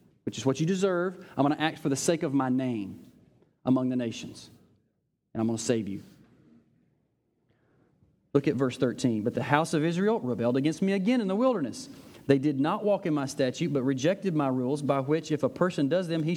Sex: male